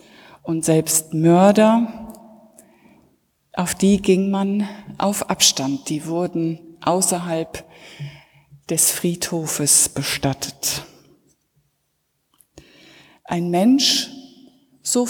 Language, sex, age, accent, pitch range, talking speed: German, female, 60-79, German, 160-220 Hz, 70 wpm